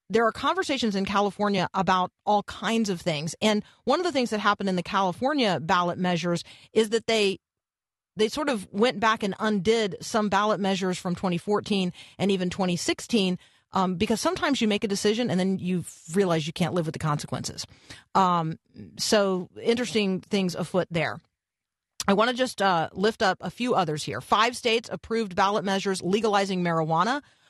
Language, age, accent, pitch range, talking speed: English, 40-59, American, 175-210 Hz, 175 wpm